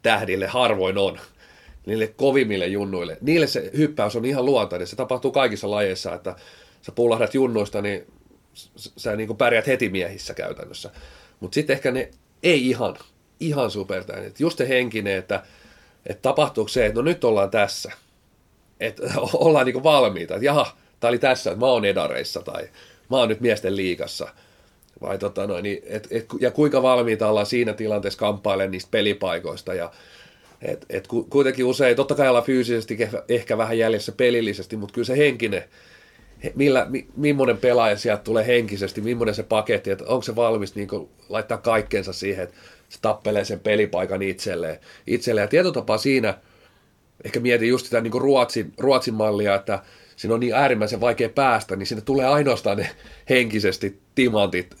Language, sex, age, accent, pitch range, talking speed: Finnish, male, 30-49, native, 105-130 Hz, 150 wpm